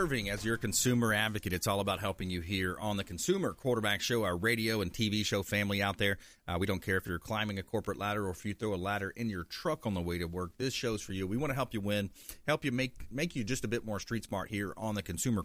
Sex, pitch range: male, 95-120 Hz